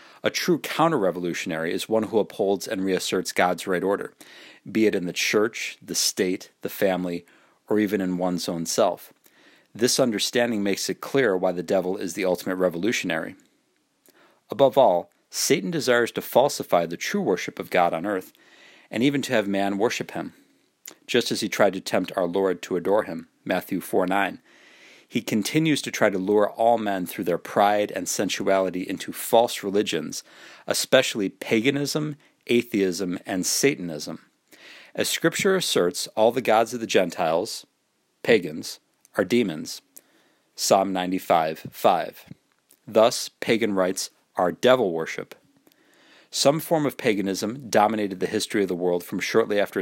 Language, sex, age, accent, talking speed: English, male, 40-59, American, 155 wpm